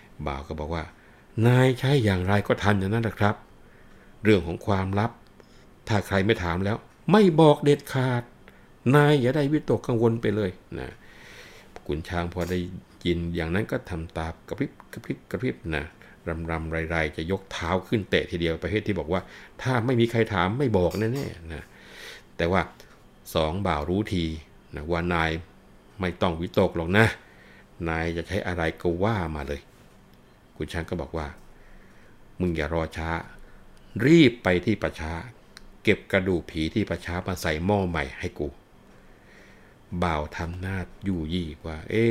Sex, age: male, 60-79